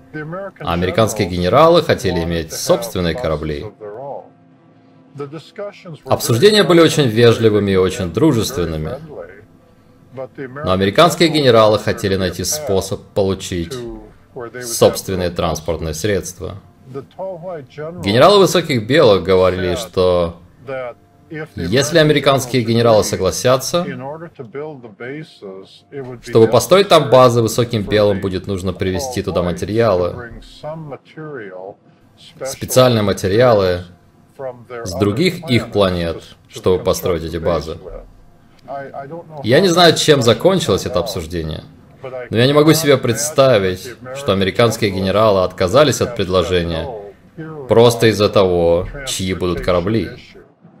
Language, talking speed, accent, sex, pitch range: Russian, 95 wpm, native, male, 95-140 Hz